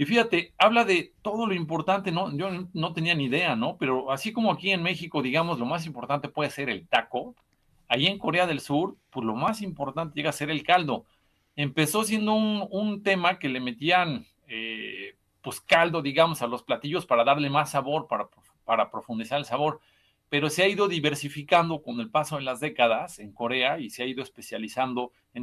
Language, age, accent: Spanish, 40-59, Mexican